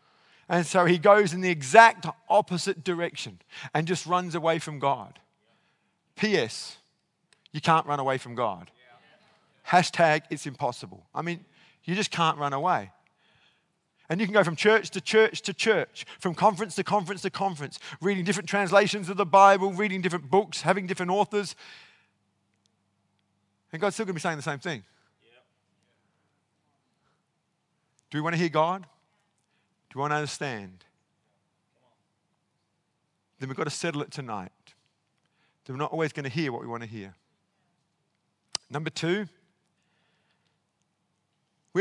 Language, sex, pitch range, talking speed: English, male, 145-195 Hz, 145 wpm